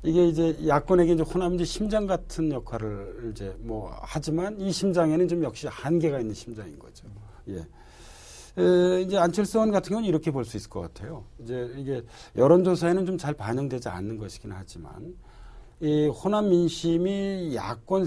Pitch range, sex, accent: 115-175 Hz, male, native